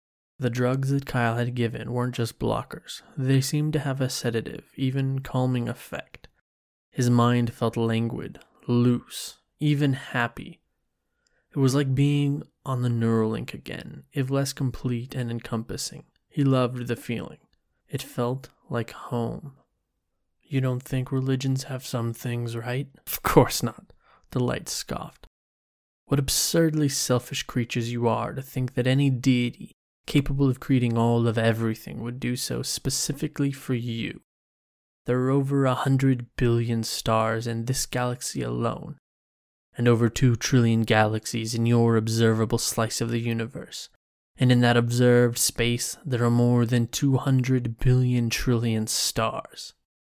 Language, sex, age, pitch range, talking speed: English, male, 20-39, 115-130 Hz, 140 wpm